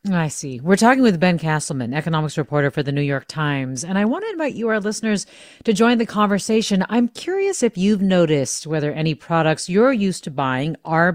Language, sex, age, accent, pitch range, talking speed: English, female, 40-59, American, 145-200 Hz, 210 wpm